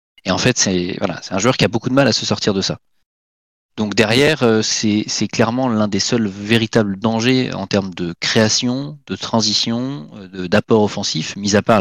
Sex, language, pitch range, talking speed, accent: male, French, 100-120 Hz, 205 wpm, French